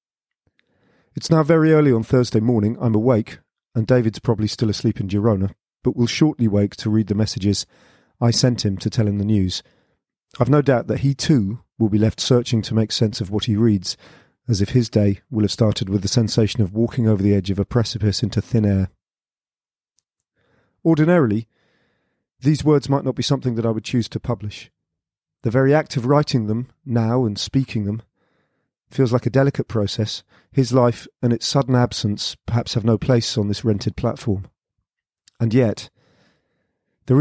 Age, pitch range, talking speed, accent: 40-59, 105-125 Hz, 185 wpm, British